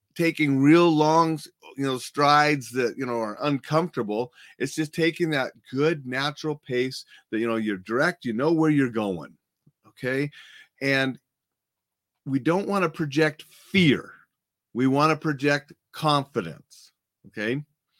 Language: English